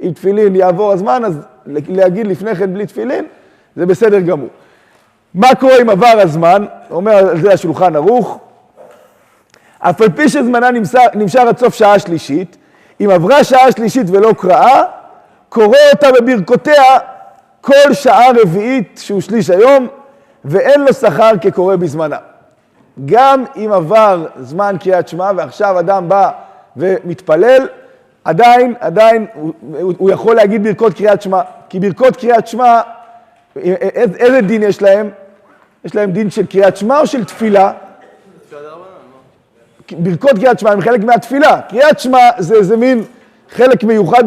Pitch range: 190-245 Hz